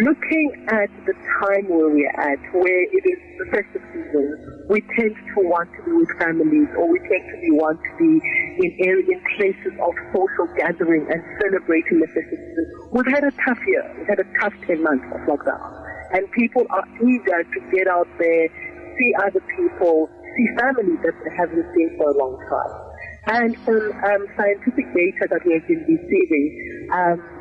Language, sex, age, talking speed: English, female, 40-59, 190 wpm